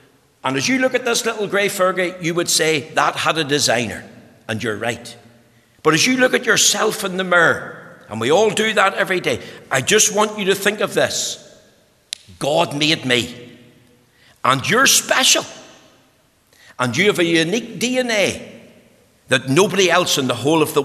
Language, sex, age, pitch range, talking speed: English, male, 60-79, 120-180 Hz, 180 wpm